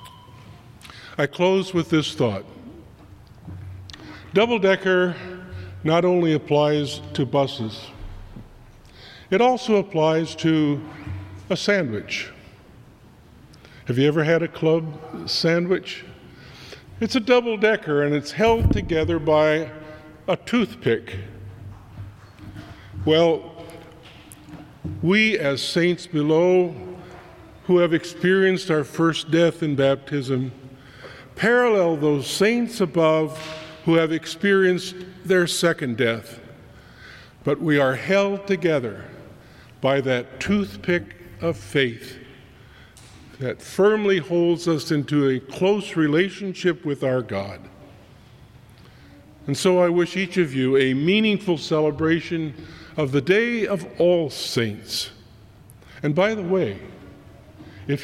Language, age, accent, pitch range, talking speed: English, 50-69, American, 120-175 Hz, 100 wpm